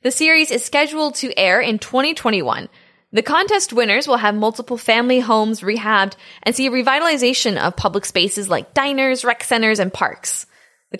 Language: English